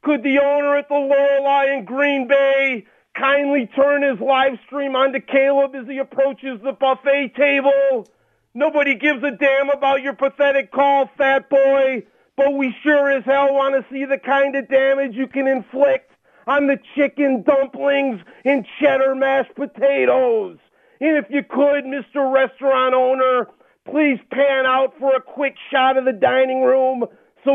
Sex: male